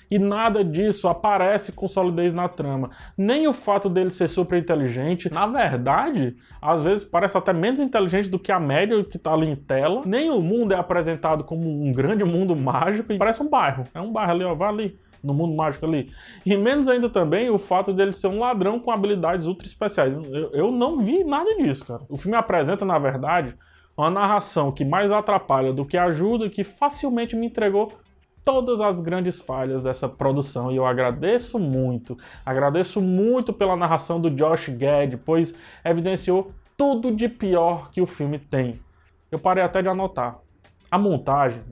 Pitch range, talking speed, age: 140-200 Hz, 185 wpm, 20-39